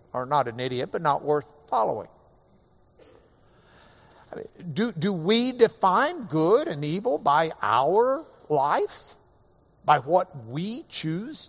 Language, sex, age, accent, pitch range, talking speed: English, male, 60-79, American, 140-185 Hz, 125 wpm